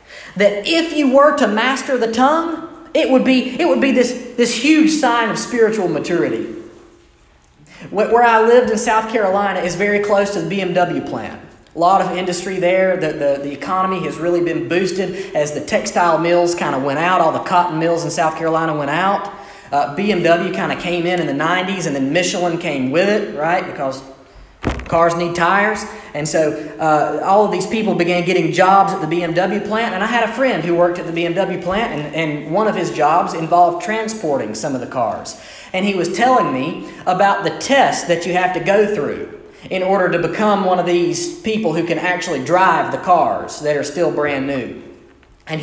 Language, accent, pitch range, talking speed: English, American, 170-225 Hz, 205 wpm